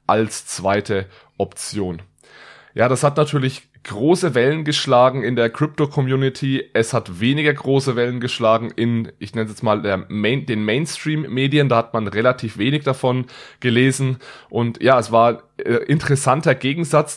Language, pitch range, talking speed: German, 115-130 Hz, 155 wpm